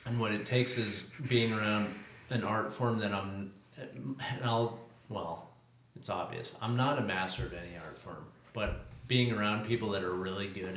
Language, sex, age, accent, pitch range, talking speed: English, male, 30-49, American, 95-120 Hz, 185 wpm